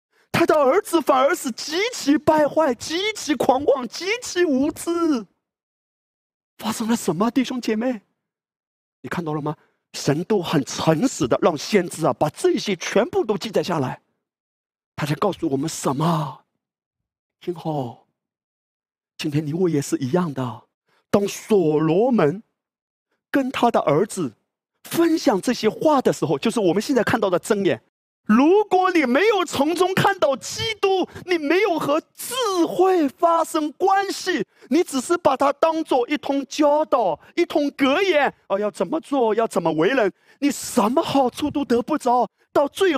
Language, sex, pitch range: Chinese, male, 210-330 Hz